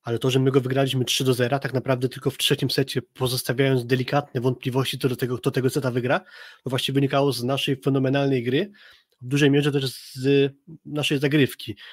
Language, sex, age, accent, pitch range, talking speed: Polish, male, 20-39, native, 130-140 Hz, 195 wpm